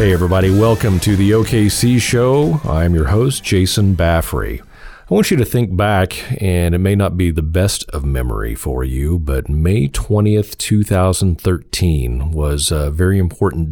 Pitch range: 80-100 Hz